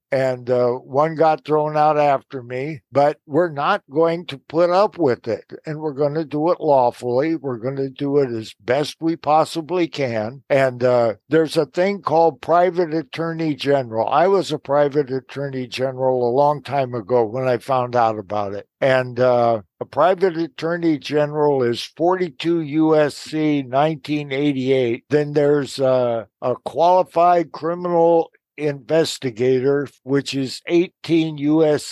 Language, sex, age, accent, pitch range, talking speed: English, male, 60-79, American, 130-160 Hz, 150 wpm